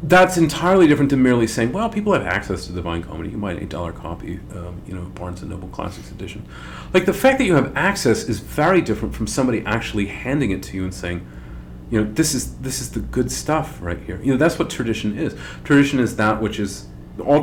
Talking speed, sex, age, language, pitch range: 235 wpm, male, 40-59, English, 90-125 Hz